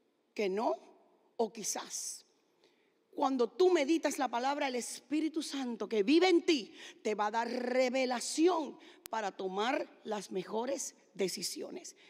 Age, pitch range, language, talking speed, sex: 40-59, 245-350 Hz, English, 130 wpm, female